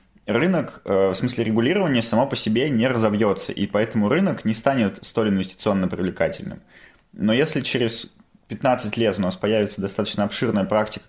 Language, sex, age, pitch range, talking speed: Russian, male, 20-39, 95-110 Hz, 150 wpm